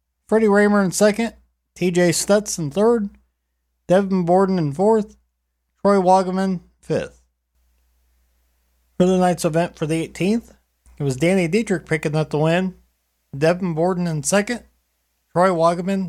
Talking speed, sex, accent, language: 135 wpm, male, American, English